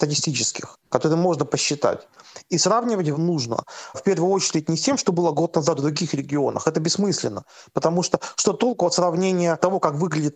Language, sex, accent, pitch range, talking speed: Russian, male, native, 160-205 Hz, 180 wpm